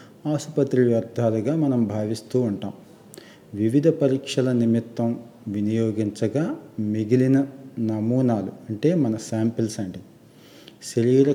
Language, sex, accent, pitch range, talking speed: Telugu, male, native, 105-125 Hz, 85 wpm